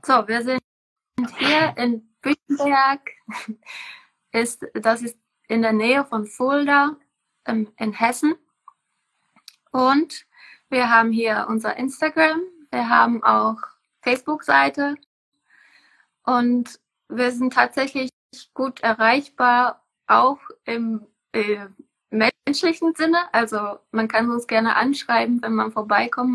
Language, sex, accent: German, female, German